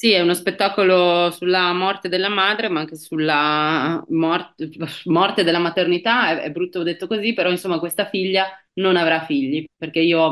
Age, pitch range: 20-39, 145-180 Hz